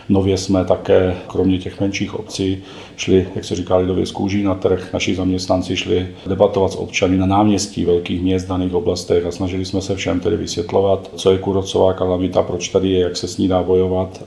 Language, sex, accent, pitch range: Czech, male, native, 90-100 Hz